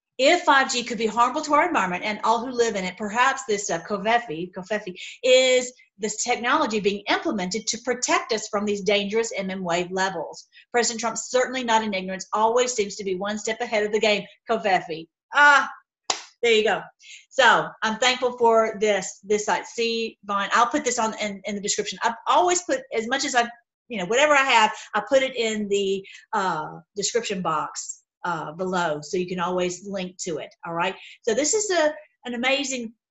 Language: English